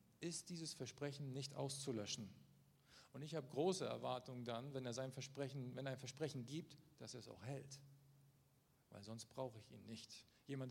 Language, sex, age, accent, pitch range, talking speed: German, male, 50-69, German, 125-160 Hz, 180 wpm